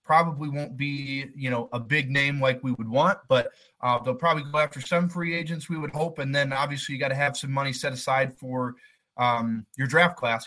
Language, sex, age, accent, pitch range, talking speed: English, male, 20-39, American, 130-165 Hz, 230 wpm